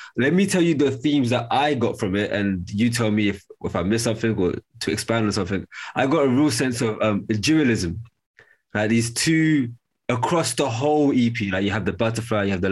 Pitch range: 110-135 Hz